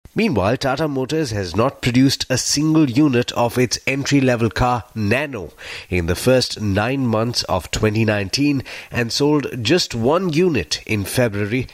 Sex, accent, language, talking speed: male, Indian, English, 145 wpm